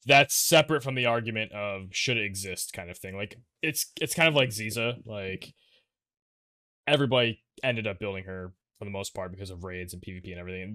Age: 20-39